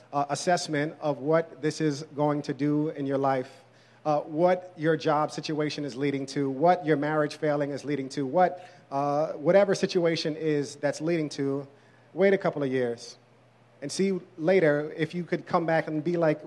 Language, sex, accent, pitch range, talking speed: English, male, American, 145-170 Hz, 185 wpm